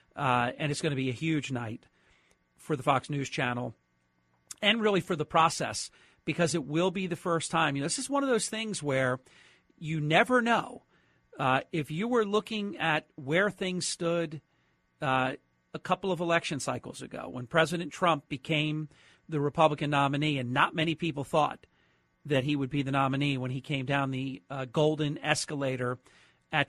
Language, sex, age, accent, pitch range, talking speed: English, male, 40-59, American, 135-165 Hz, 180 wpm